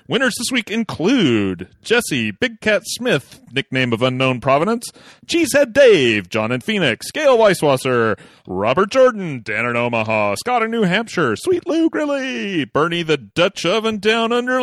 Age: 40-59